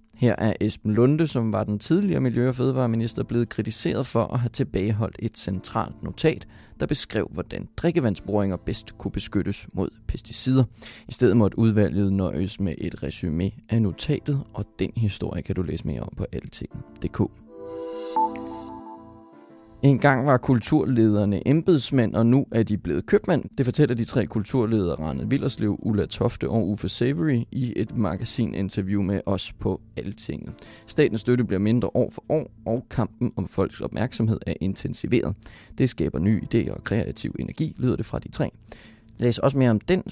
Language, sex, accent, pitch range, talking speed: English, male, Danish, 105-125 Hz, 165 wpm